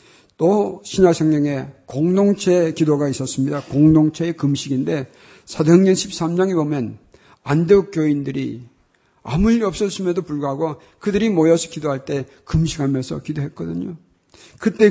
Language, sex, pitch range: Korean, male, 135-170 Hz